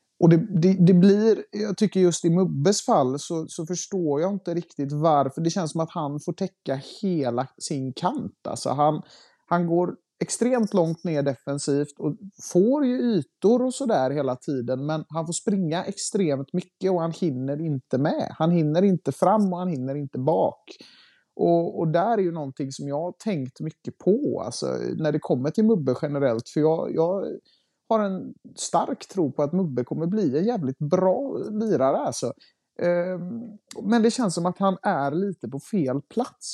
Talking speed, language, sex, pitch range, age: 180 wpm, Swedish, male, 140-190 Hz, 30-49